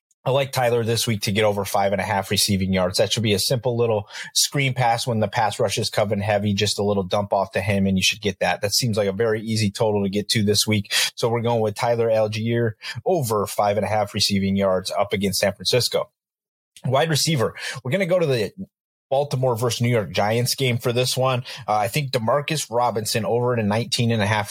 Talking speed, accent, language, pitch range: 240 wpm, American, English, 105-125 Hz